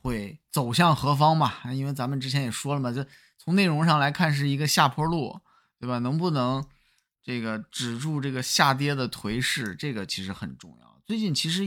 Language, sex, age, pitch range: Chinese, male, 20-39, 125-160 Hz